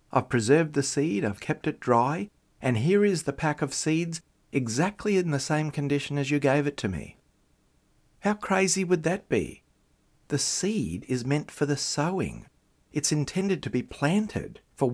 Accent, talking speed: Australian, 175 wpm